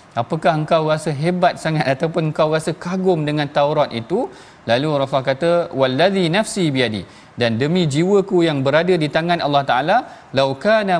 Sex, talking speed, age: male, 155 wpm, 40-59